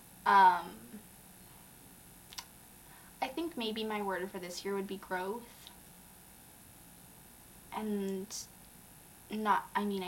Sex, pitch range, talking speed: female, 185-215 Hz, 95 wpm